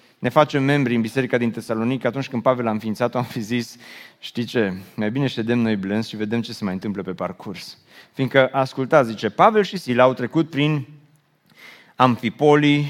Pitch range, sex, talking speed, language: 120-175 Hz, male, 185 wpm, Romanian